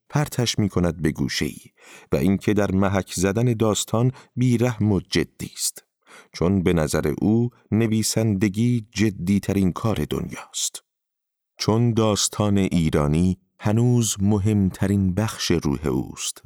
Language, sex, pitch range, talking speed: Persian, male, 80-105 Hz, 125 wpm